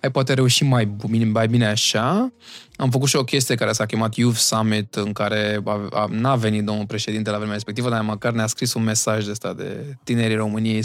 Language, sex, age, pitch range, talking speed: Romanian, male, 20-39, 110-155 Hz, 215 wpm